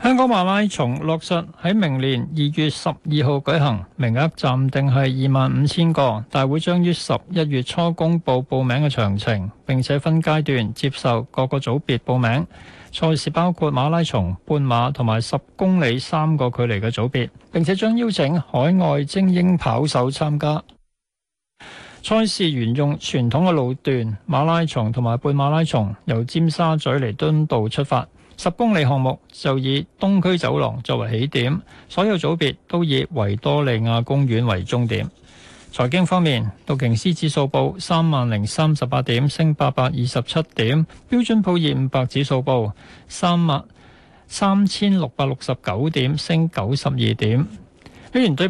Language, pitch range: Chinese, 125-165 Hz